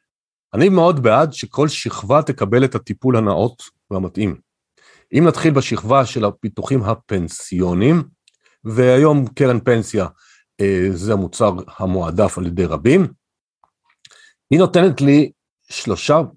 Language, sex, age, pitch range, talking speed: Hebrew, male, 40-59, 110-155 Hz, 105 wpm